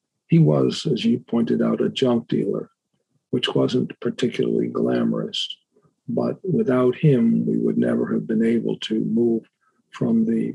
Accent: American